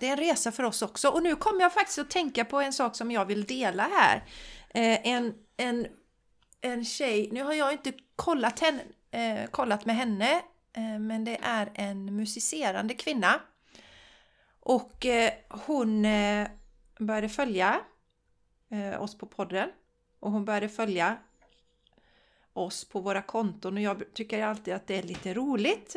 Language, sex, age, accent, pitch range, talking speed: Swedish, female, 40-59, native, 205-260 Hz, 165 wpm